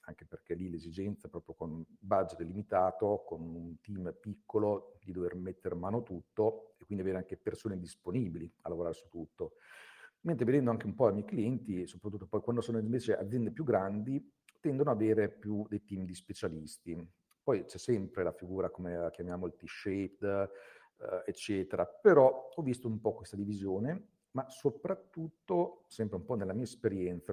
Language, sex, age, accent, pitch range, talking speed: Italian, male, 50-69, native, 95-130 Hz, 175 wpm